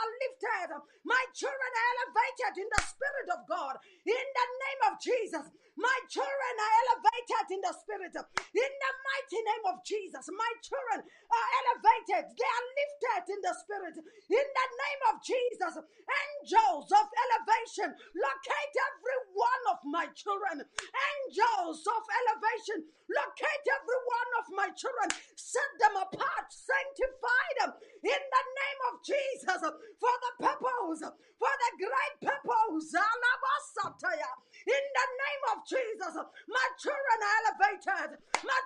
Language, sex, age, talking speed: English, female, 30-49, 140 wpm